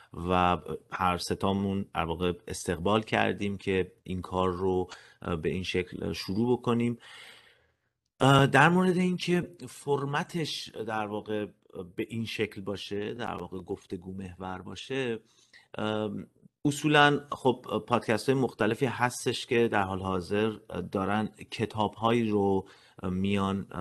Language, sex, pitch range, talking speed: Persian, male, 95-125 Hz, 110 wpm